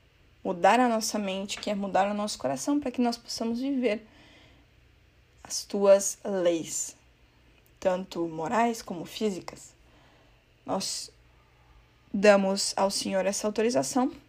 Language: Portuguese